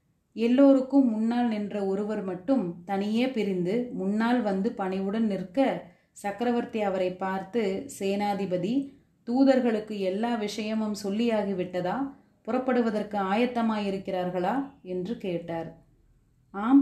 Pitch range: 190-235 Hz